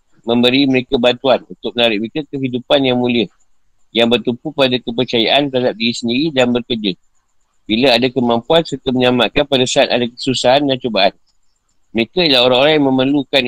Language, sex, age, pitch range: Malay, male, 50-69, 115-135 Hz